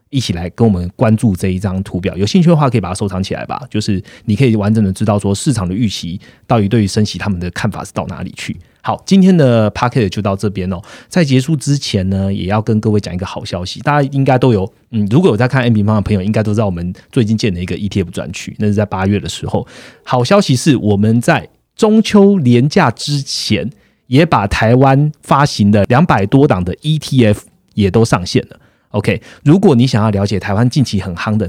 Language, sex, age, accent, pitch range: Chinese, male, 30-49, native, 100-130 Hz